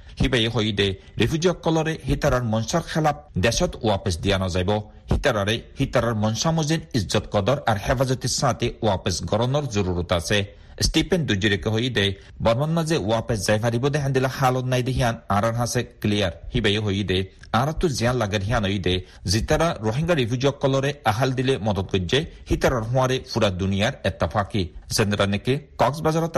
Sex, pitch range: male, 100-135 Hz